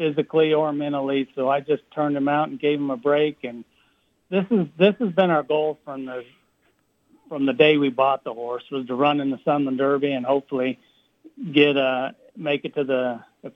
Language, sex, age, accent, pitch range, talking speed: English, male, 60-79, American, 140-160 Hz, 210 wpm